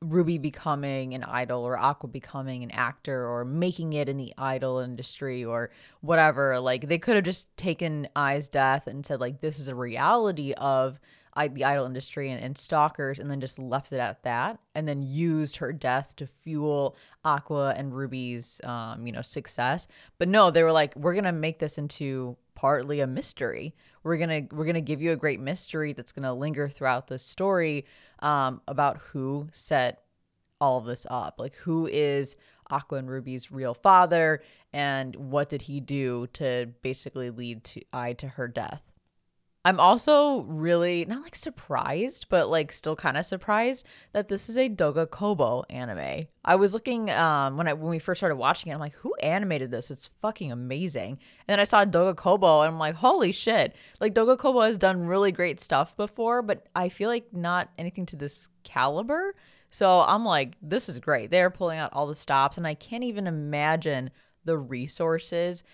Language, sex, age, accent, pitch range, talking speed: English, female, 20-39, American, 135-175 Hz, 190 wpm